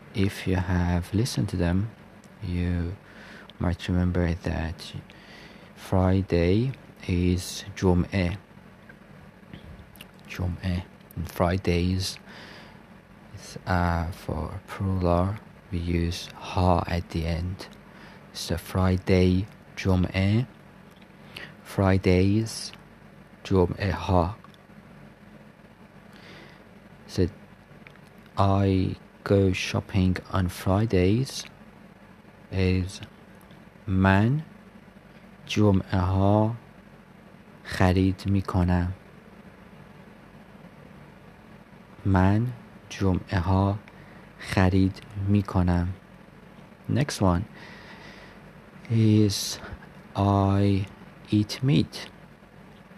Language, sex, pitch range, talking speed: Persian, male, 90-110 Hz, 70 wpm